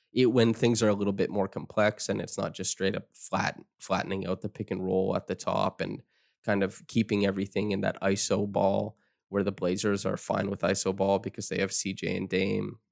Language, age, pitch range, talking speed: English, 20-39, 95-115 Hz, 225 wpm